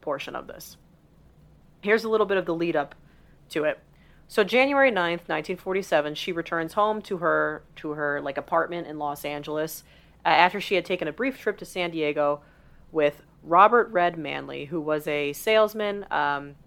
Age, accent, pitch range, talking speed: 30-49, American, 155-185 Hz, 175 wpm